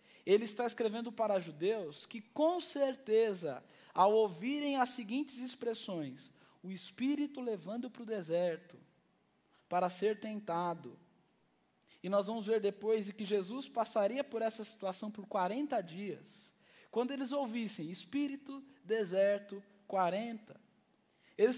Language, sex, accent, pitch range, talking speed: Portuguese, male, Brazilian, 190-250 Hz, 120 wpm